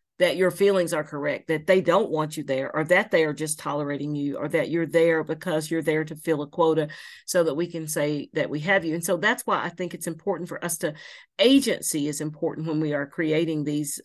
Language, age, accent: English, 40-59, American